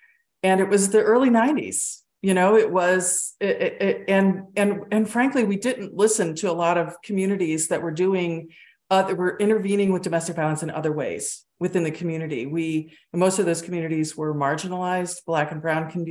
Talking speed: 180 wpm